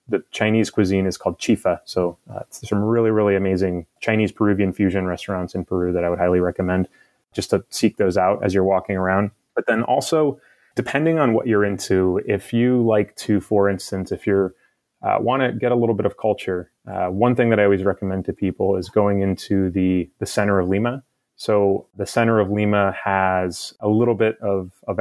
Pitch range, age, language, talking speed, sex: 95-110 Hz, 20-39, English, 205 wpm, male